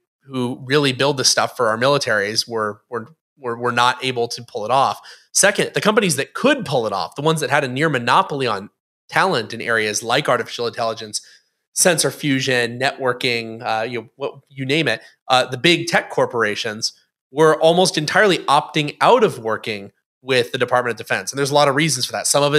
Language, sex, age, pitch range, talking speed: English, male, 30-49, 120-155 Hz, 205 wpm